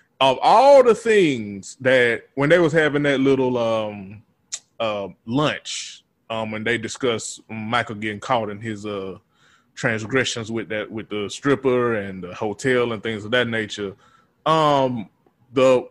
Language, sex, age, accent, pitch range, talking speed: English, male, 20-39, American, 115-140 Hz, 150 wpm